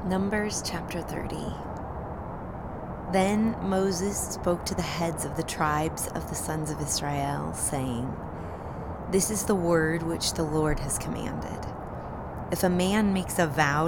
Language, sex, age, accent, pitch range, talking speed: English, female, 30-49, American, 145-175 Hz, 145 wpm